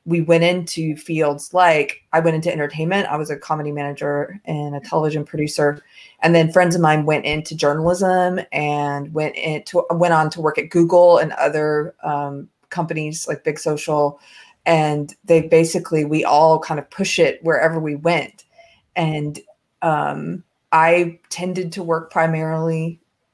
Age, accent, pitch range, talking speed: 30-49, American, 155-185 Hz, 155 wpm